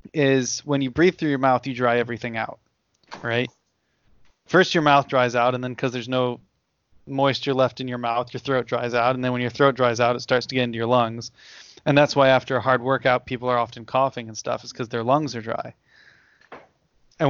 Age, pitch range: 20-39, 120-140 Hz